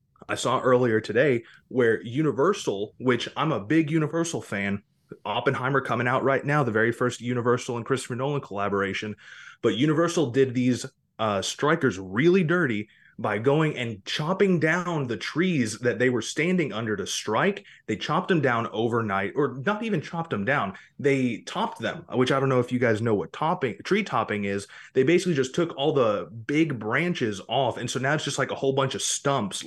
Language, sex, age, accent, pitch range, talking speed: English, male, 20-39, American, 110-145 Hz, 190 wpm